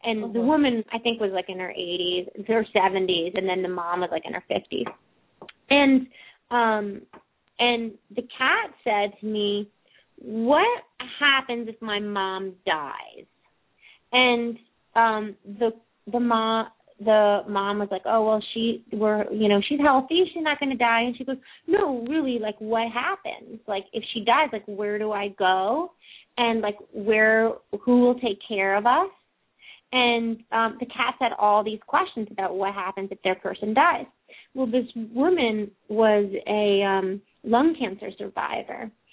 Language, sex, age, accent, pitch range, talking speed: English, female, 30-49, American, 205-245 Hz, 165 wpm